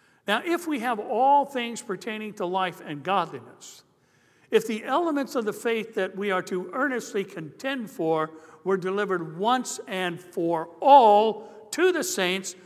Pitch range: 175-235 Hz